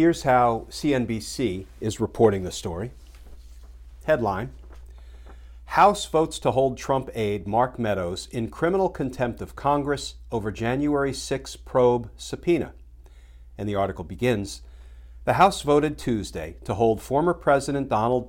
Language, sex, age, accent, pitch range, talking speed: English, male, 50-69, American, 95-140 Hz, 130 wpm